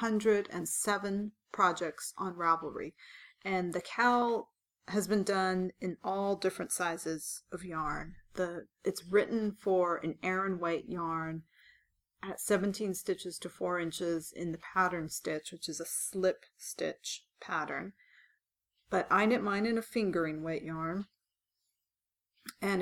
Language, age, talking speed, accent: English, 30-49, 130 wpm, American